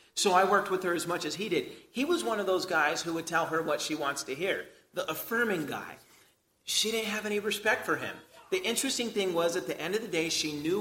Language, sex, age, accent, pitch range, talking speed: English, male, 30-49, American, 170-240 Hz, 260 wpm